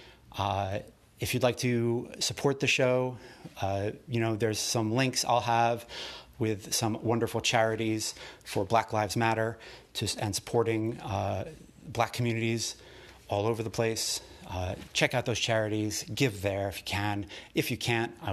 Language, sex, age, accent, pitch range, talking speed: English, male, 30-49, American, 105-125 Hz, 155 wpm